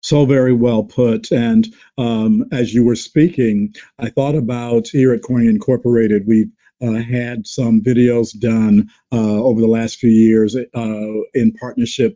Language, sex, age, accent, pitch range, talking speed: English, male, 50-69, American, 110-135 Hz, 160 wpm